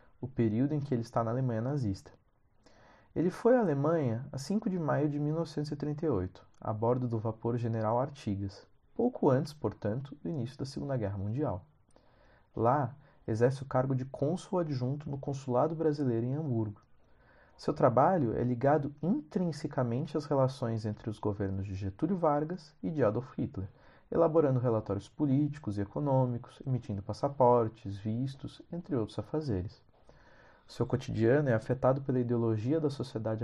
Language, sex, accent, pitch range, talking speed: Portuguese, male, Brazilian, 105-145 Hz, 145 wpm